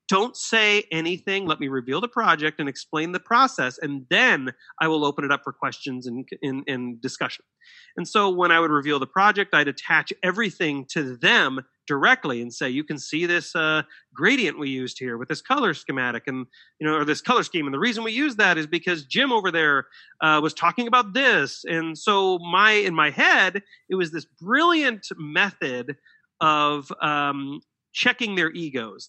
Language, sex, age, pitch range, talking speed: English, male, 30-49, 150-220 Hz, 190 wpm